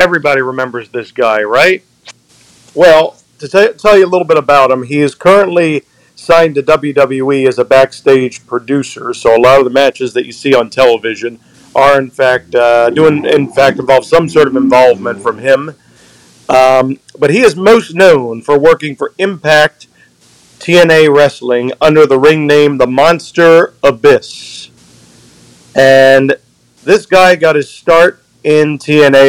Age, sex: 50-69, male